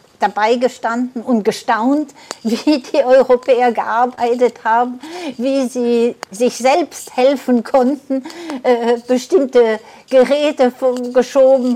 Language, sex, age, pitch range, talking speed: German, female, 60-79, 225-265 Hz, 95 wpm